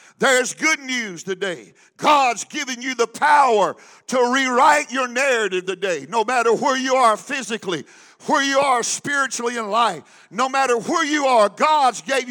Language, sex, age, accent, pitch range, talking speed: English, male, 50-69, American, 235-300 Hz, 160 wpm